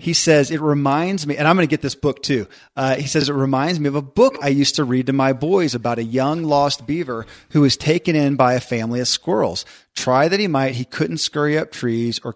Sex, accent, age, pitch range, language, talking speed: male, American, 40-59, 125-150 Hz, English, 255 wpm